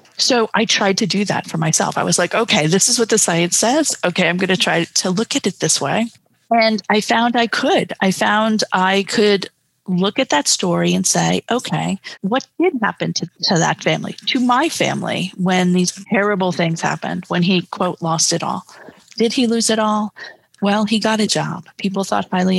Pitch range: 170-205 Hz